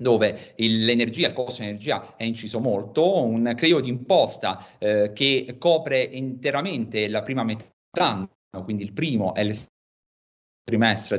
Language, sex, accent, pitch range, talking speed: Italian, male, native, 105-135 Hz, 140 wpm